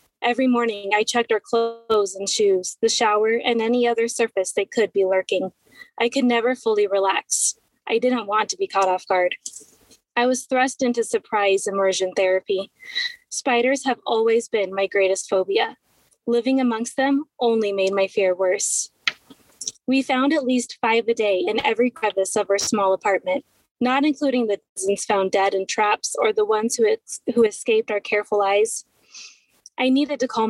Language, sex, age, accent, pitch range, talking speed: English, female, 20-39, American, 200-255 Hz, 175 wpm